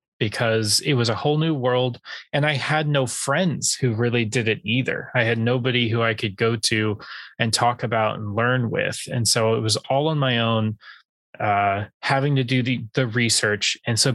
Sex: male